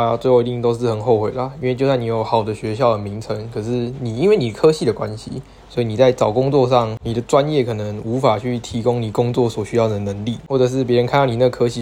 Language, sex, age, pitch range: Chinese, male, 20-39, 110-130 Hz